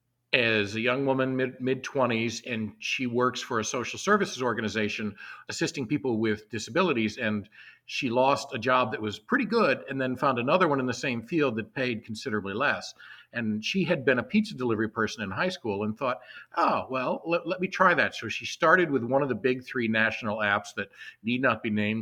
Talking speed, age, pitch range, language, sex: 205 wpm, 50-69, 110-135 Hz, English, male